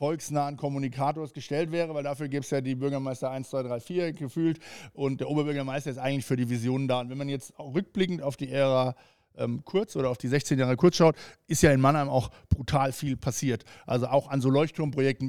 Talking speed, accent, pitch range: 210 wpm, German, 130-155 Hz